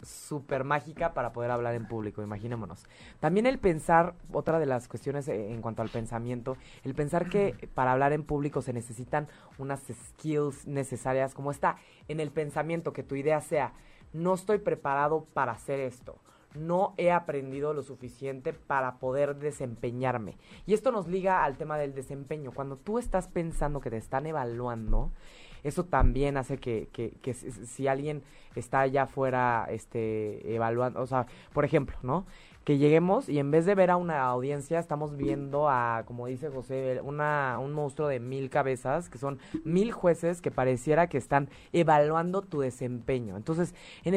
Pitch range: 130-160 Hz